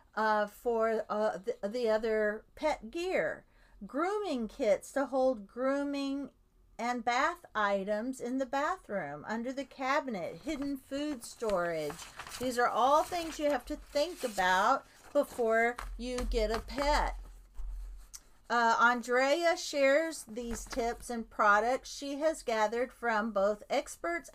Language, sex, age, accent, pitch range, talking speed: English, female, 50-69, American, 210-280 Hz, 130 wpm